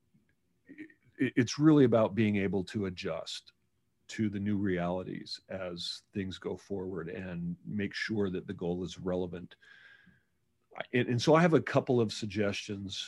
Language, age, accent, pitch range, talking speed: English, 40-59, American, 100-115 Hz, 145 wpm